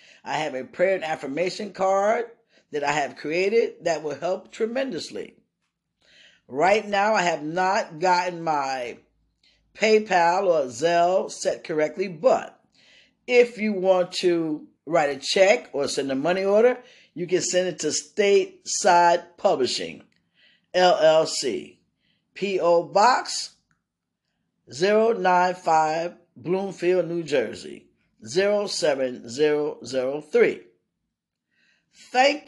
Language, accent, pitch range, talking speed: English, American, 160-215 Hz, 110 wpm